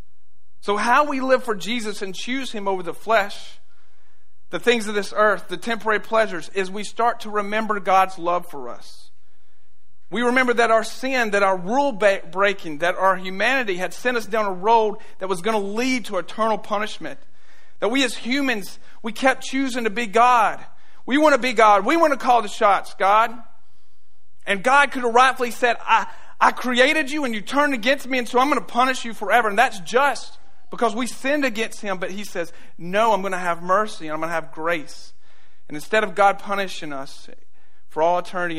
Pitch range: 150-230 Hz